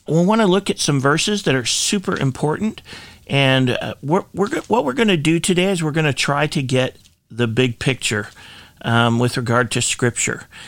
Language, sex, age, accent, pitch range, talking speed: English, male, 40-59, American, 125-160 Hz, 190 wpm